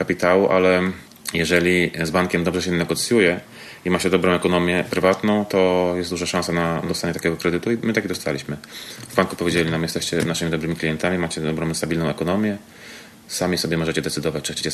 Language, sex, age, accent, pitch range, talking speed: Polish, male, 30-49, native, 85-100 Hz, 180 wpm